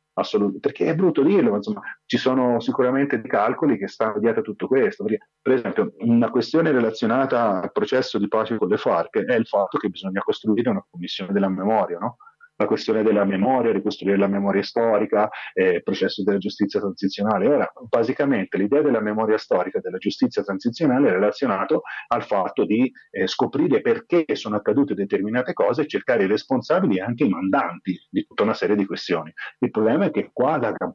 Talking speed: 190 wpm